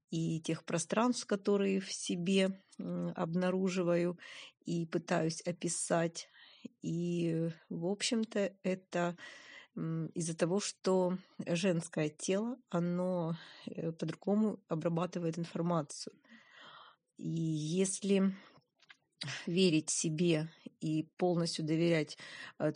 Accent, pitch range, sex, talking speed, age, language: native, 170-195 Hz, female, 80 wpm, 30-49, Russian